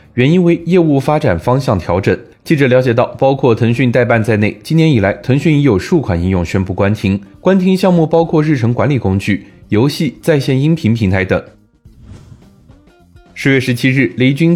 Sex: male